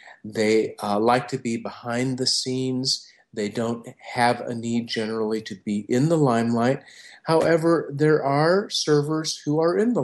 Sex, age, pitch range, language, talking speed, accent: male, 40-59, 115-140 Hz, English, 160 wpm, American